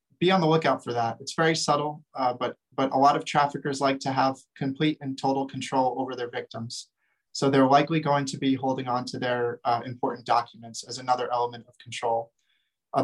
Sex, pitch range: male, 130-150 Hz